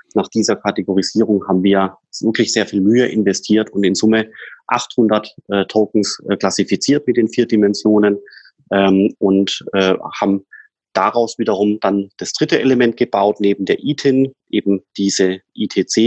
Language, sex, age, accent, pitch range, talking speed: German, male, 30-49, German, 100-115 Hz, 145 wpm